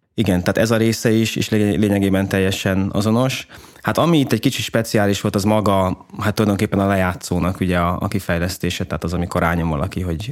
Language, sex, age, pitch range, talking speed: Hungarian, male, 20-39, 90-105 Hz, 185 wpm